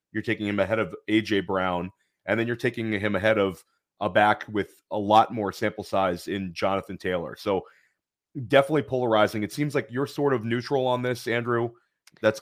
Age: 30-49